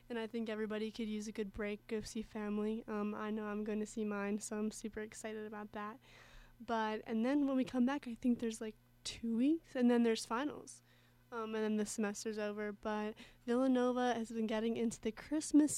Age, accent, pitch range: 20-39, American, 215-240 Hz